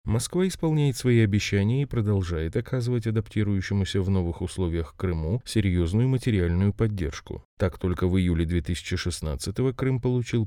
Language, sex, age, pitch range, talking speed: Russian, male, 30-49, 90-120 Hz, 125 wpm